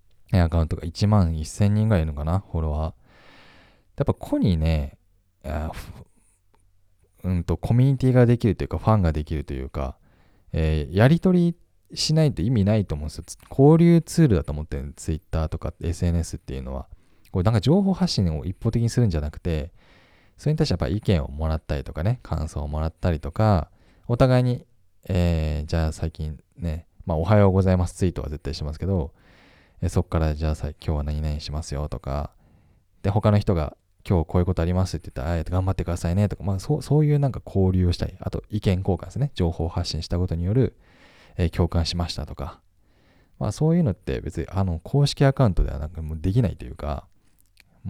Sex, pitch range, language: male, 80-105 Hz, Japanese